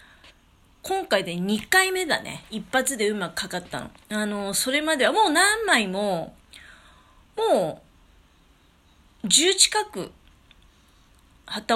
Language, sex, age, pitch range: Japanese, female, 30-49, 185-255 Hz